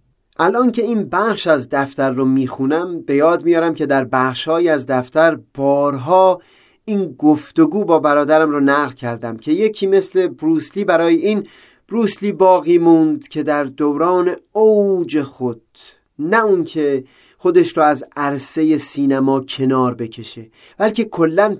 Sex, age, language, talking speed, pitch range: male, 30-49, Persian, 135 wpm, 145-205 Hz